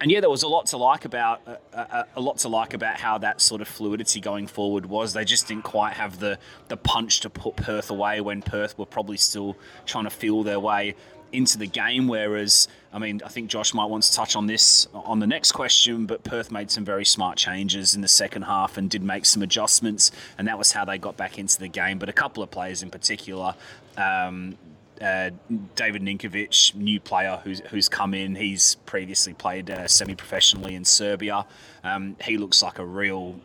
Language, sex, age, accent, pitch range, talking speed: English, male, 20-39, Australian, 100-115 Hz, 215 wpm